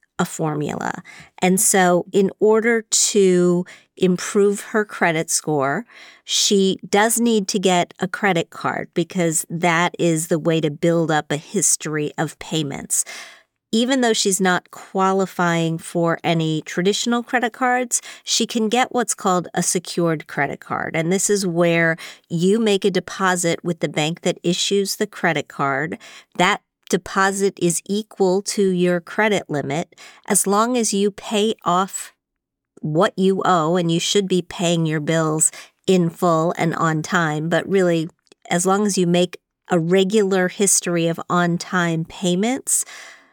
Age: 40-59